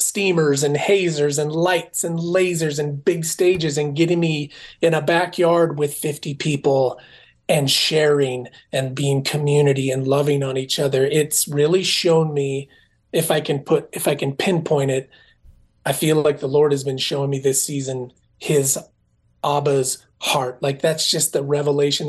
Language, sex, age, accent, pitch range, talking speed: English, male, 30-49, American, 140-160 Hz, 165 wpm